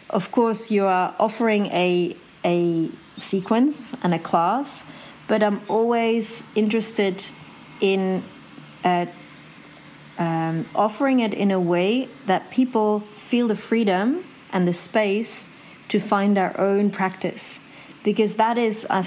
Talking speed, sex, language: 125 wpm, female, English